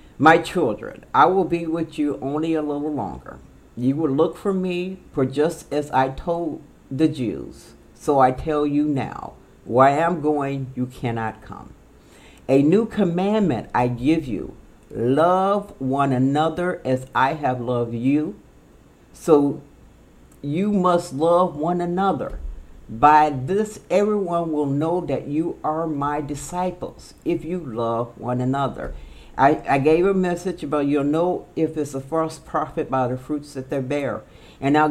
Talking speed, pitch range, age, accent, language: 155 wpm, 125-165 Hz, 50-69, American, English